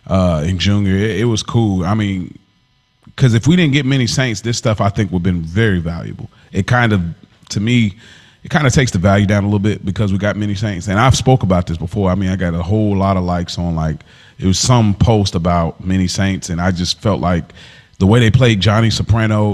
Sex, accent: male, American